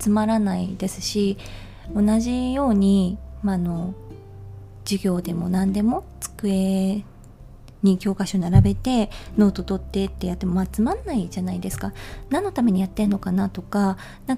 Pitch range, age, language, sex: 185-220 Hz, 20-39, Japanese, female